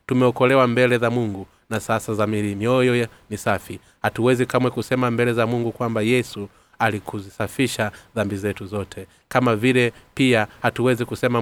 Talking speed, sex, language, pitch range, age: 140 wpm, male, Swahili, 100-120 Hz, 30-49